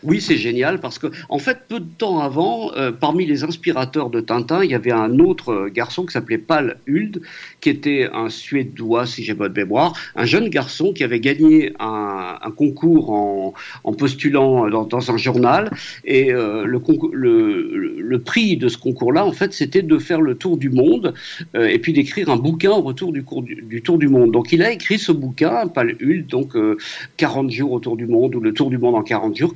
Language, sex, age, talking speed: French, male, 50-69, 225 wpm